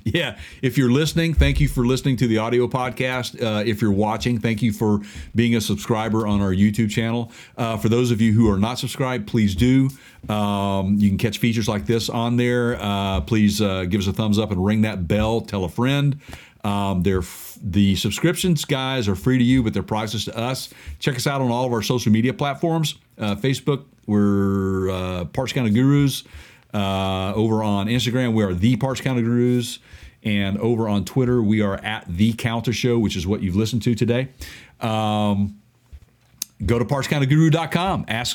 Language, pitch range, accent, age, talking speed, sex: English, 105-130 Hz, American, 50-69, 195 wpm, male